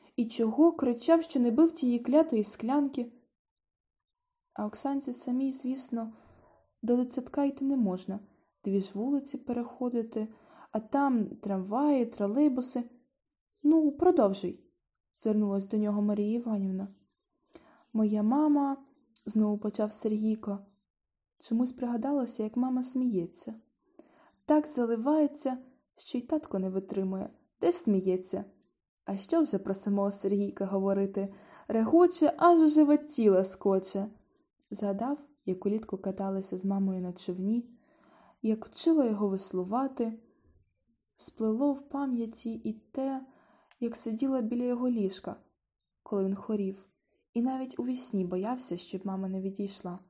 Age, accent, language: 20-39, native, Ukrainian